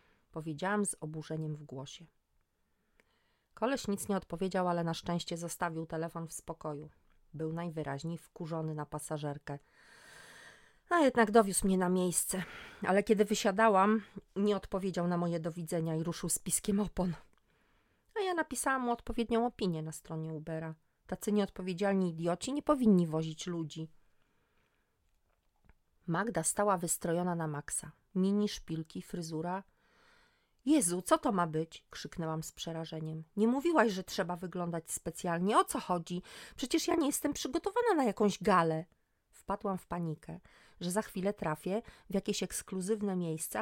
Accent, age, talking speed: native, 30-49, 140 wpm